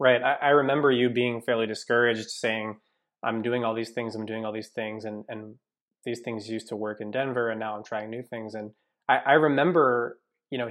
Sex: male